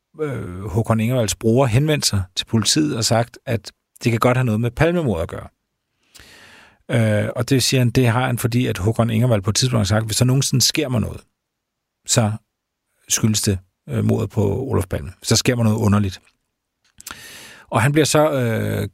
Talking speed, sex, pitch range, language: 185 wpm, male, 105-130 Hz, Danish